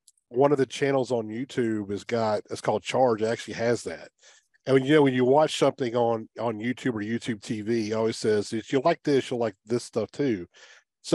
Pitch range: 120-150 Hz